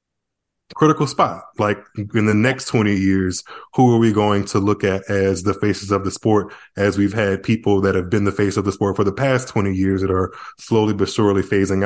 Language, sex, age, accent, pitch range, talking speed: English, male, 20-39, American, 95-115 Hz, 225 wpm